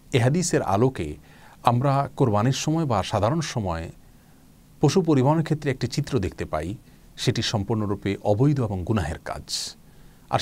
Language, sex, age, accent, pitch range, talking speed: Bengali, male, 40-59, native, 90-125 Hz, 125 wpm